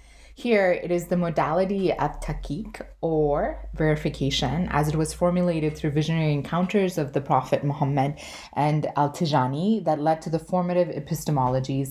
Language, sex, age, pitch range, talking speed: English, female, 20-39, 135-160 Hz, 140 wpm